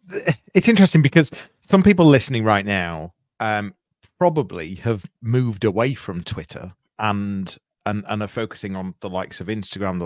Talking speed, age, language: 155 wpm, 30-49, English